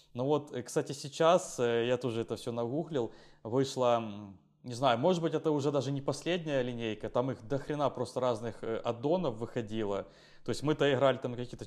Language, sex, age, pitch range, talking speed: Ukrainian, male, 20-39, 125-155 Hz, 180 wpm